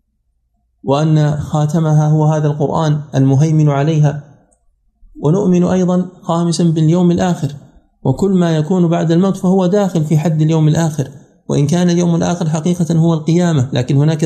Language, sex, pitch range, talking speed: Arabic, male, 145-165 Hz, 135 wpm